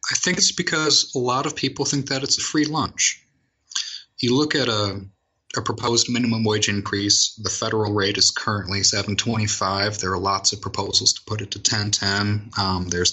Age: 30-49